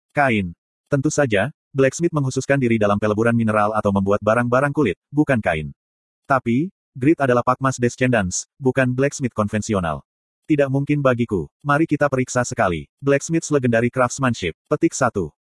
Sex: male